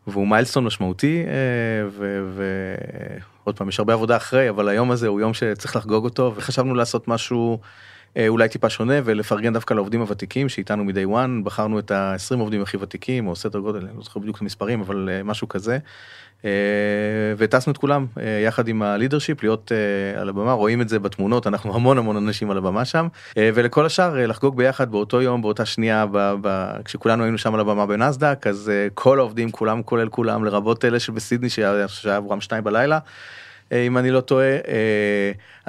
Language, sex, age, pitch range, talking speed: Hebrew, male, 30-49, 105-125 Hz, 180 wpm